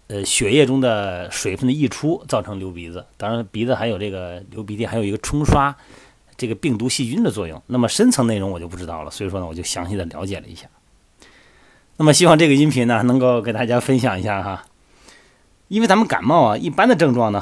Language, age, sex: Chinese, 30-49, male